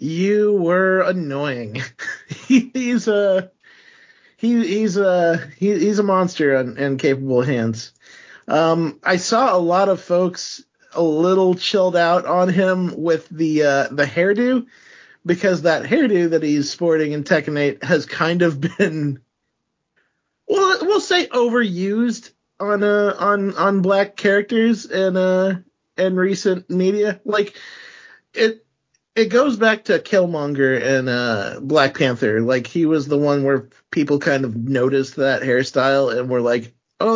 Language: English